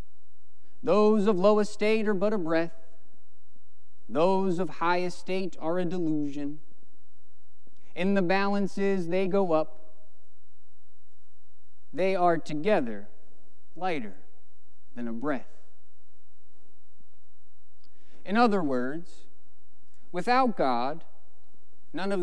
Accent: American